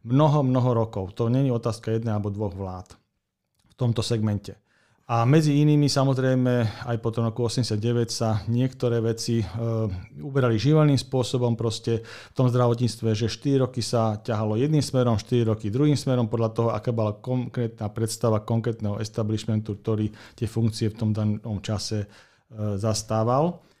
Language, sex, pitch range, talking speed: Slovak, male, 110-125 Hz, 145 wpm